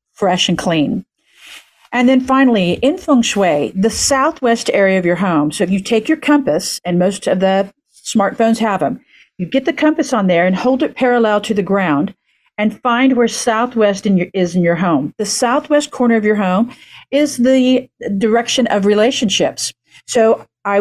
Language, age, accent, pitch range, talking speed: English, 50-69, American, 190-255 Hz, 180 wpm